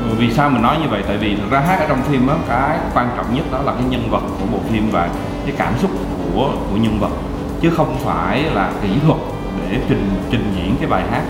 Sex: male